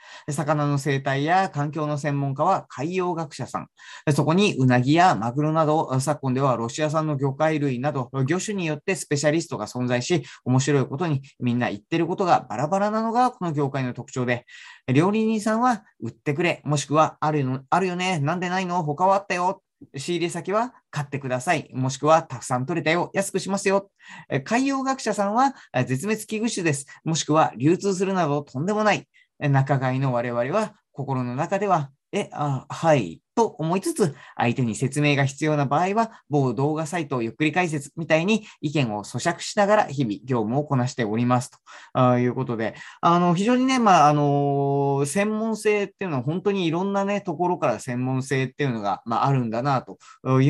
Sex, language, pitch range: male, Japanese, 135-185 Hz